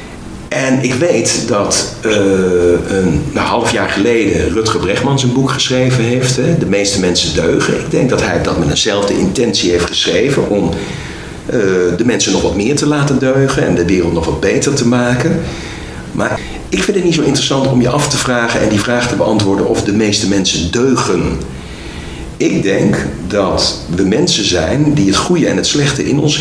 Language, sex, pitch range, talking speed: Dutch, male, 100-145 Hz, 190 wpm